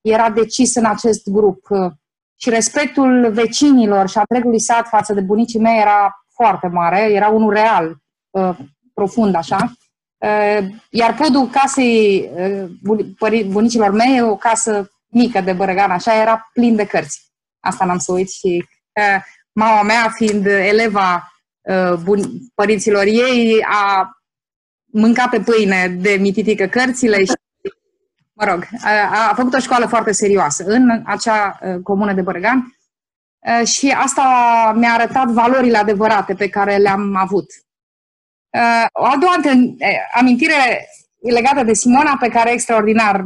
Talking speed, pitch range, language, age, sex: 125 wpm, 200-240 Hz, Romanian, 20-39, female